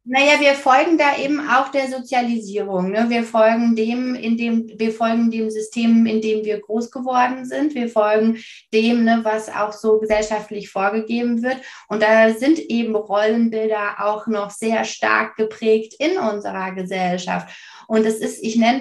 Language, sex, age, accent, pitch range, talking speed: German, female, 20-39, German, 210-250 Hz, 165 wpm